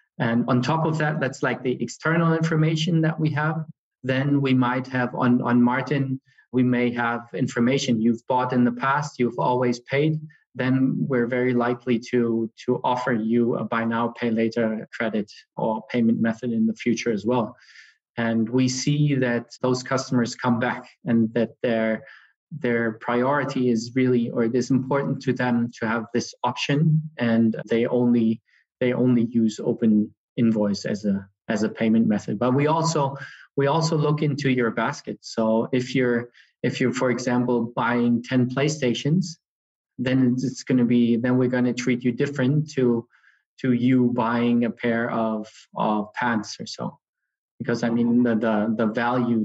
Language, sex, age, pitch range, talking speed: English, male, 20-39, 120-130 Hz, 170 wpm